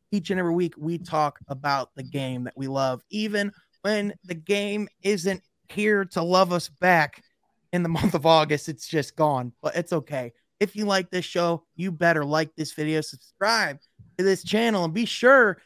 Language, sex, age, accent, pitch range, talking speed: English, male, 20-39, American, 145-185 Hz, 190 wpm